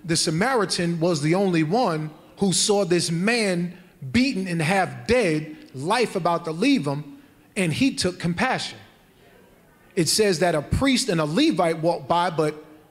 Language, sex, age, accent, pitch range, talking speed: English, male, 30-49, American, 170-250 Hz, 160 wpm